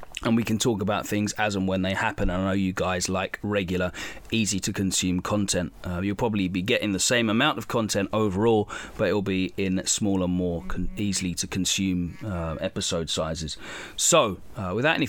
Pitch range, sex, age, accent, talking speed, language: 95-120 Hz, male, 30-49, British, 170 wpm, English